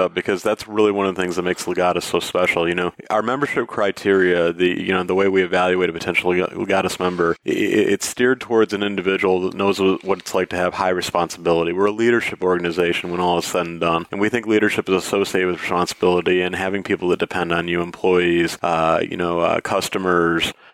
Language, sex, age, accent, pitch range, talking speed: English, male, 30-49, American, 90-95 Hz, 200 wpm